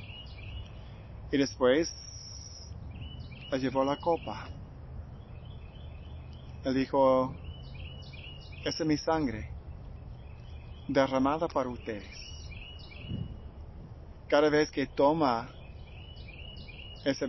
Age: 40-59